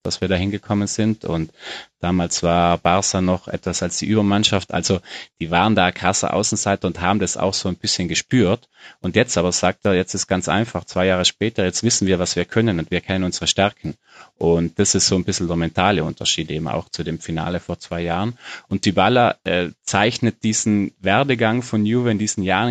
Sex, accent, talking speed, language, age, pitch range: male, German, 210 wpm, German, 30-49, 95-115 Hz